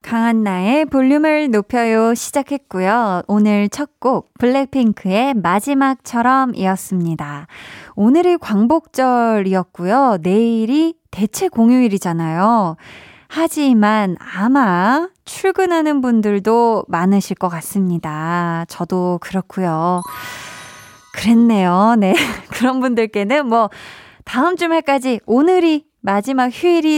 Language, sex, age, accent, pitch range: Korean, female, 20-39, native, 195-275 Hz